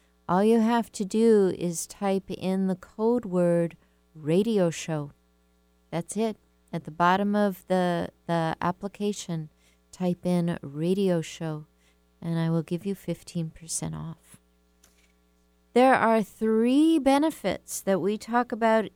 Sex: female